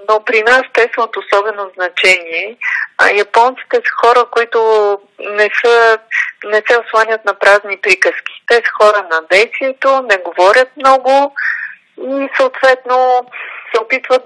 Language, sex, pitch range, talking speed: Bulgarian, female, 205-245 Hz, 140 wpm